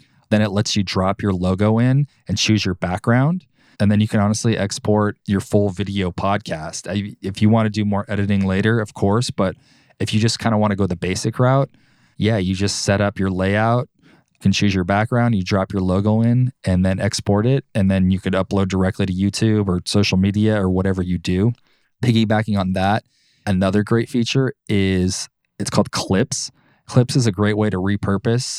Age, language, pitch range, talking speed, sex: 20-39, English, 95-115 Hz, 205 wpm, male